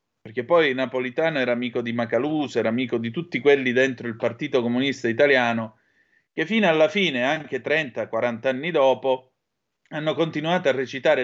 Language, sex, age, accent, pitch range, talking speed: Italian, male, 30-49, native, 115-145 Hz, 155 wpm